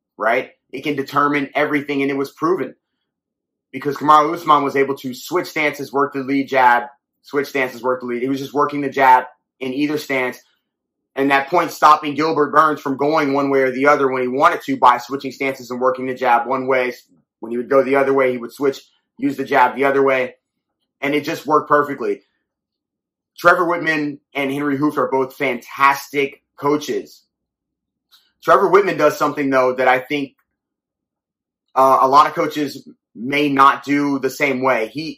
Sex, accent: male, American